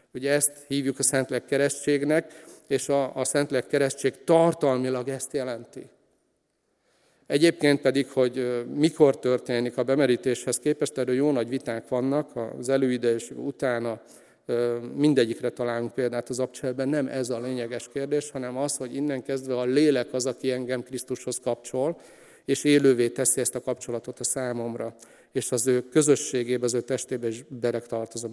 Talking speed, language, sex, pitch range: 150 wpm, Hungarian, male, 125-145 Hz